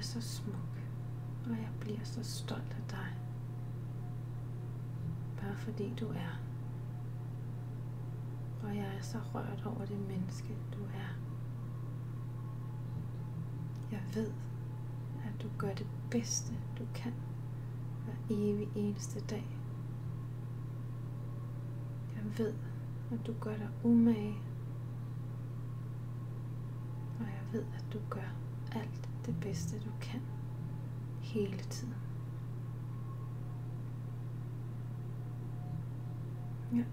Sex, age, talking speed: female, 30-49, 95 wpm